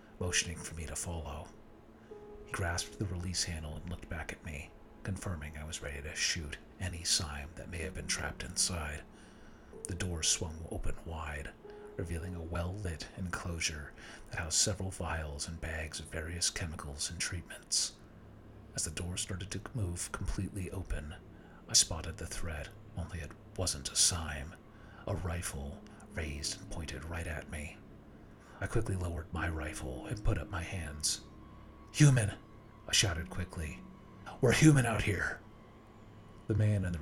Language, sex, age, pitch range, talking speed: English, male, 40-59, 80-105 Hz, 155 wpm